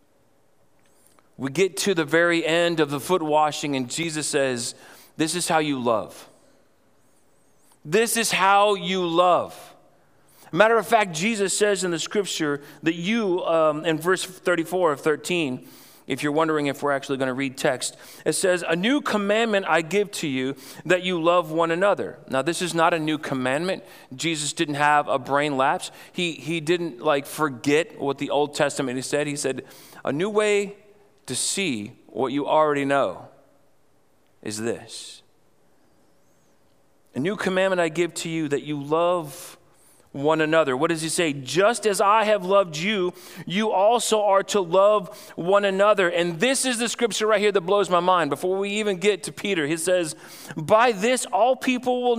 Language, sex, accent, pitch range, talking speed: English, male, American, 155-205 Hz, 175 wpm